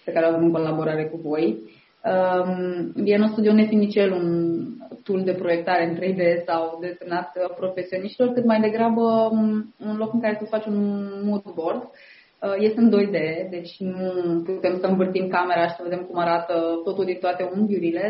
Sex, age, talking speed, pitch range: female, 20-39, 170 wpm, 175-215 Hz